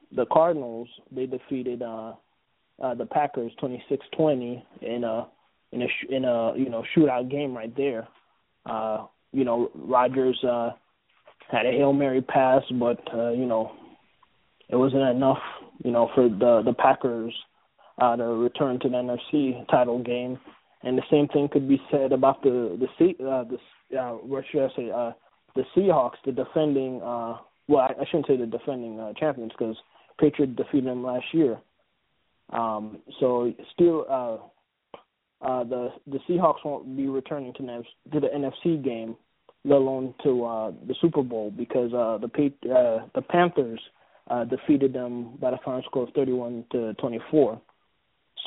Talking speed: 165 wpm